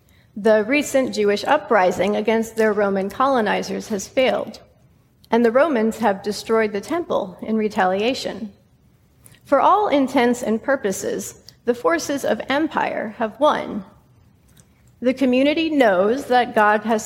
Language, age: English, 40-59